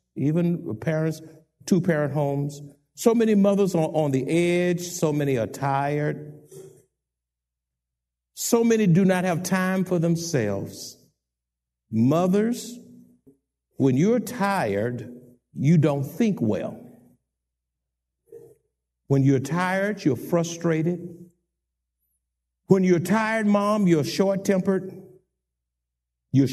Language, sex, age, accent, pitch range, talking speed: English, male, 60-79, American, 140-200 Hz, 95 wpm